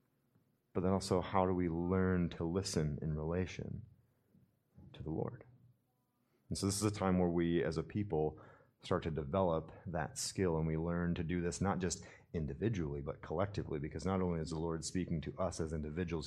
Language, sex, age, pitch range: English, male, 30-49, 80-105 Hz